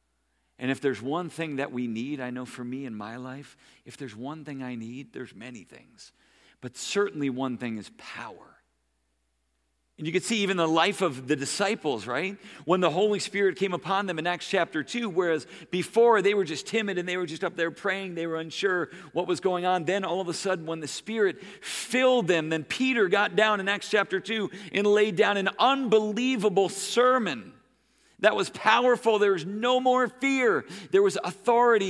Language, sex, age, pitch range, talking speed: English, male, 50-69, 130-200 Hz, 200 wpm